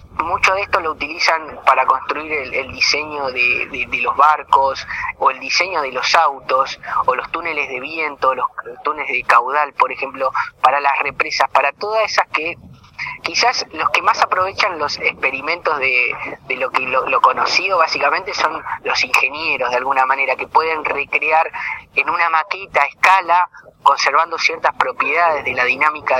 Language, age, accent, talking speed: Spanish, 20-39, Argentinian, 165 wpm